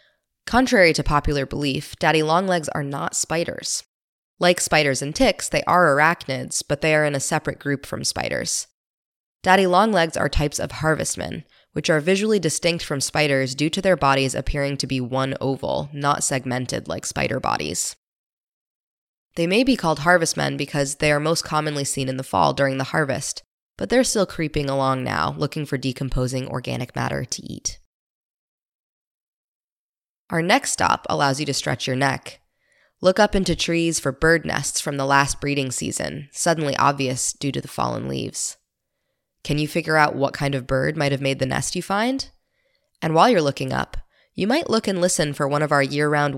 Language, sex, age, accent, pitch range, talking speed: English, female, 20-39, American, 135-165 Hz, 175 wpm